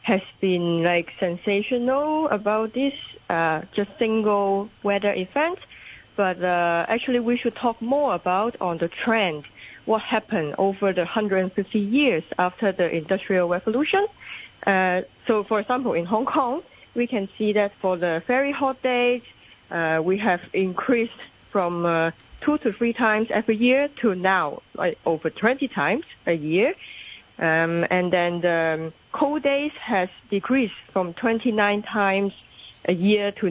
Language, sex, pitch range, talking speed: English, female, 175-225 Hz, 150 wpm